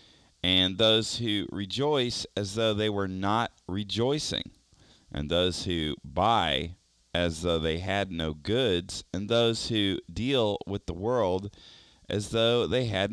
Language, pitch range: English, 90-115 Hz